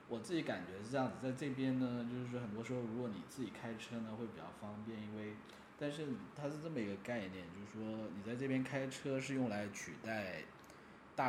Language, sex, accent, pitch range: Chinese, male, native, 105-130 Hz